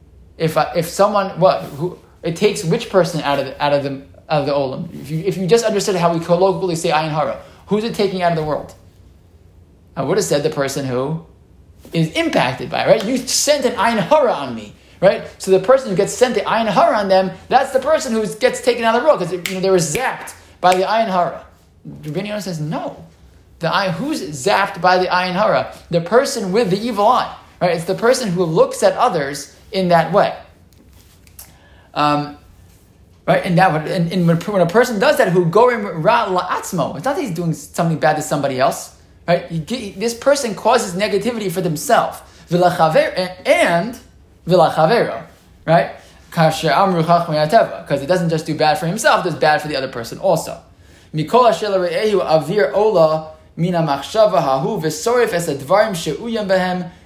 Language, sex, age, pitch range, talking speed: English, male, 20-39, 150-210 Hz, 170 wpm